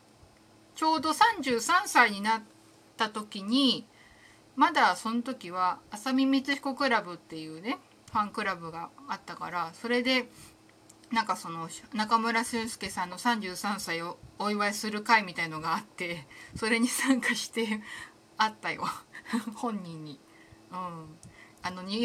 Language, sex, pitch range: Japanese, female, 170-250 Hz